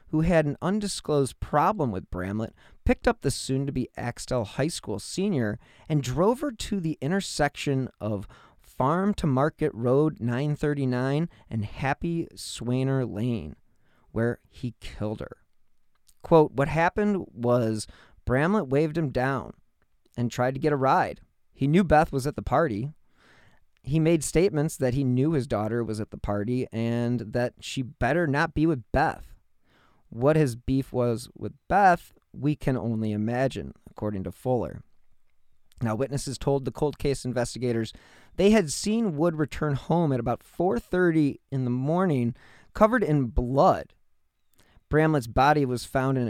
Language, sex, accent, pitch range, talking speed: English, male, American, 120-150 Hz, 150 wpm